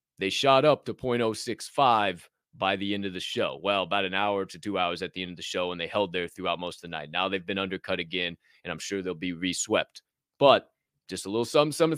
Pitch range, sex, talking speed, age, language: 95-145 Hz, male, 250 wpm, 20-39, English